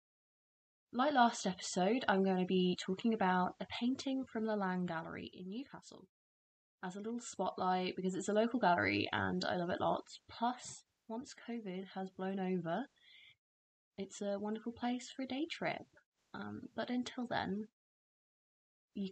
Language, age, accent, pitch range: English, 20-39, British, 180-235 Hz